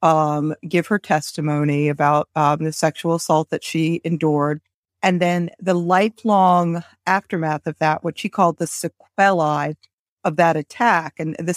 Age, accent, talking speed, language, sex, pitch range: 50-69, American, 150 wpm, English, female, 155-195 Hz